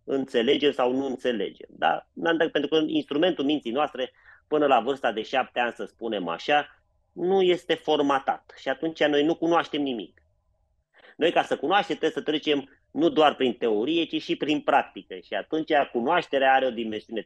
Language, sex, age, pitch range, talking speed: Romanian, male, 30-49, 125-165 Hz, 170 wpm